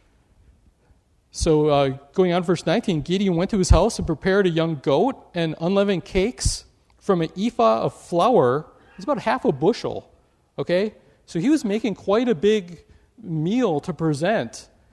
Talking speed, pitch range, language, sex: 160 wpm, 155-210 Hz, English, male